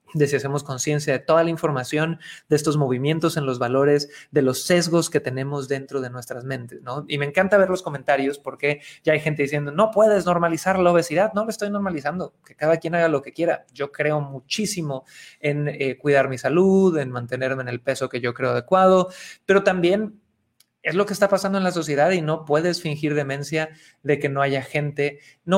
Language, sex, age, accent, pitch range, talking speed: Spanish, male, 30-49, Mexican, 140-175 Hz, 210 wpm